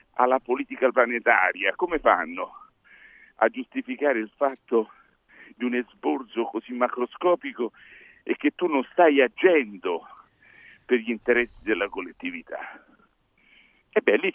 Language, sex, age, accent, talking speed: Italian, male, 50-69, native, 110 wpm